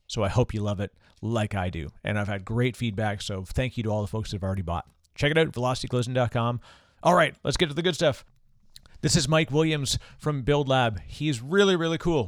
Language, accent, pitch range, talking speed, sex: English, American, 115-145 Hz, 235 wpm, male